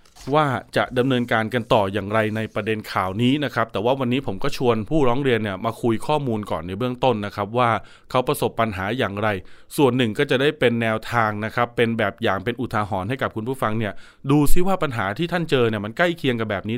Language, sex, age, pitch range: Thai, male, 20-39, 110-145 Hz